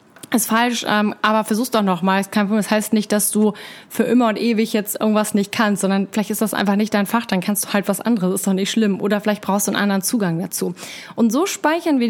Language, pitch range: German, 205-260 Hz